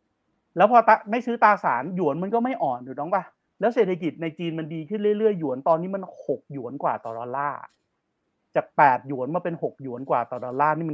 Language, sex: Thai, male